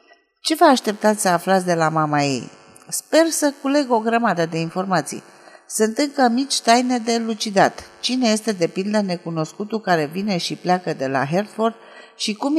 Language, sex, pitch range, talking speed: Romanian, female, 170-230 Hz, 170 wpm